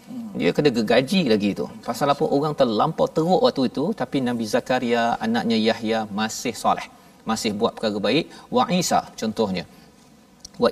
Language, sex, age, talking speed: Malayalam, male, 40-59, 150 wpm